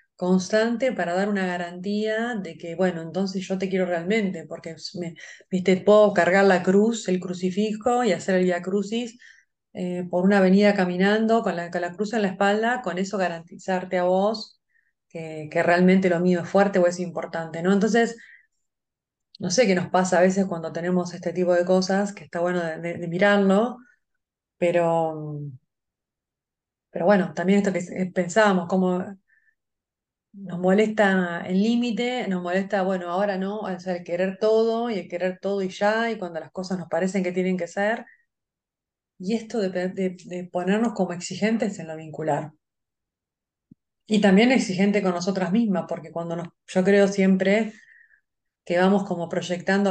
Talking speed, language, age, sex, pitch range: 170 wpm, Spanish, 30-49, female, 175-205 Hz